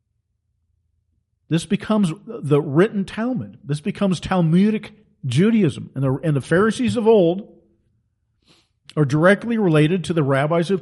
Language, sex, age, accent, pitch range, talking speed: English, male, 50-69, American, 120-195 Hz, 120 wpm